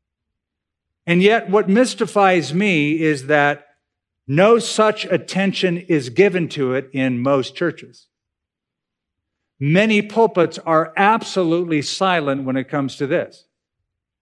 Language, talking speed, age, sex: English, 115 wpm, 50-69, male